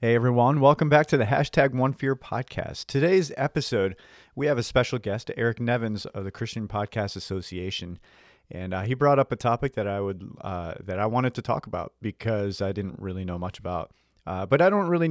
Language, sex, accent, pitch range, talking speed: English, male, American, 95-115 Hz, 210 wpm